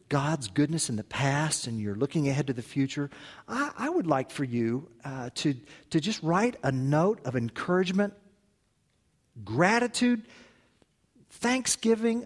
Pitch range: 125-180 Hz